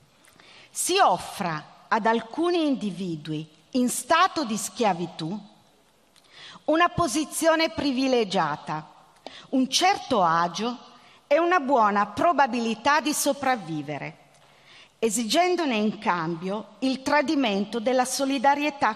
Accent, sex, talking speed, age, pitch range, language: native, female, 90 wpm, 40-59, 195-280 Hz, Italian